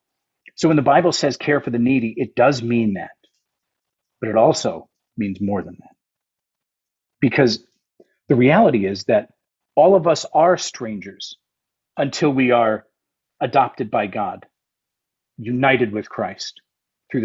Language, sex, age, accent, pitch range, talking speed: English, male, 40-59, American, 120-170 Hz, 140 wpm